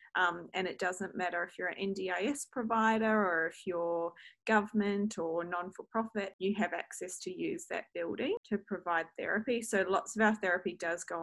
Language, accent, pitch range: English, Australian, 170-210 Hz